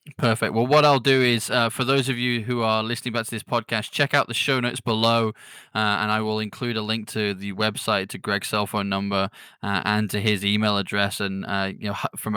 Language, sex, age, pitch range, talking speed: English, male, 20-39, 105-125 Hz, 245 wpm